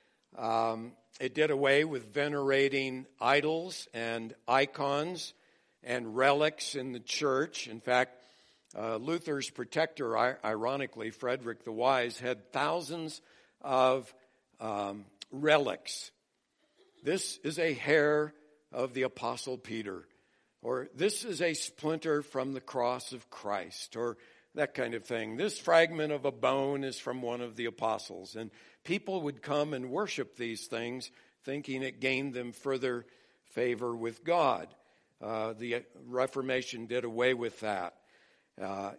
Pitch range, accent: 120-145 Hz, American